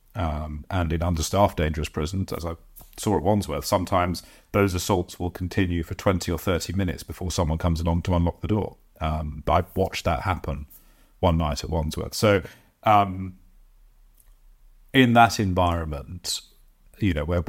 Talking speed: 160 wpm